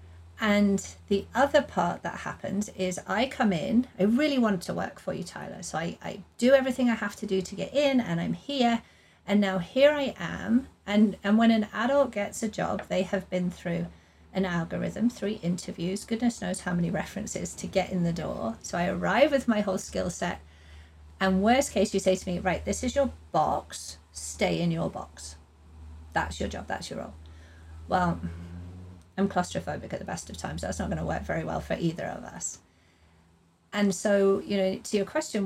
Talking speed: 205 wpm